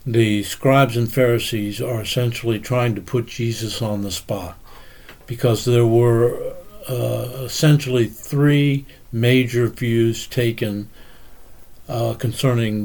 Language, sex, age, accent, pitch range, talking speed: English, male, 60-79, American, 115-130 Hz, 110 wpm